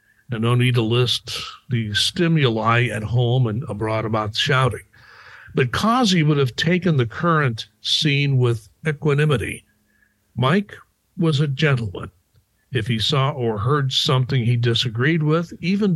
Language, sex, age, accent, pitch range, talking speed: English, male, 60-79, American, 115-155 Hz, 140 wpm